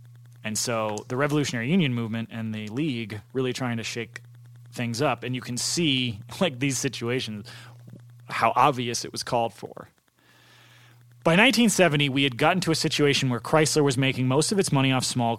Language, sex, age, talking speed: English, male, 30-49, 180 wpm